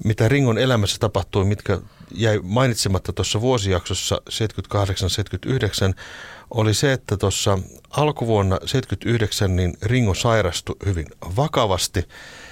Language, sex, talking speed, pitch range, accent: Finnish, male, 100 wpm, 90-110 Hz, native